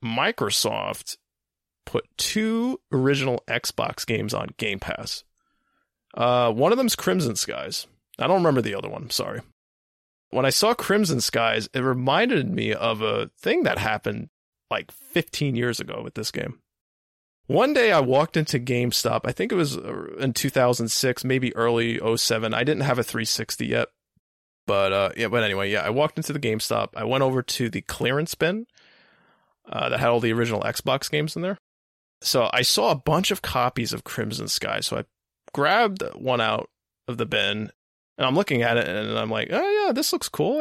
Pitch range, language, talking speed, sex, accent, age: 115-150 Hz, English, 175 wpm, male, American, 20-39